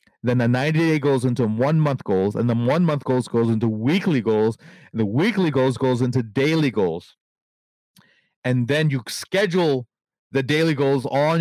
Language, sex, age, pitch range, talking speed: English, male, 30-49, 120-150 Hz, 165 wpm